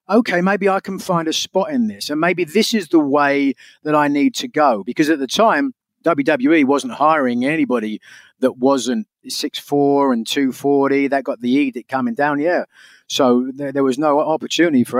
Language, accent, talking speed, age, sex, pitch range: English, British, 190 wpm, 40-59, male, 125-150 Hz